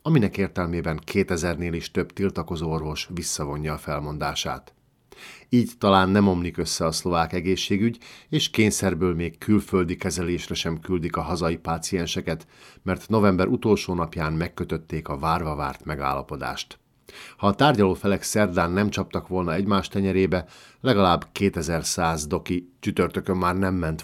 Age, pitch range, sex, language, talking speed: 50-69, 80-100 Hz, male, Hungarian, 130 wpm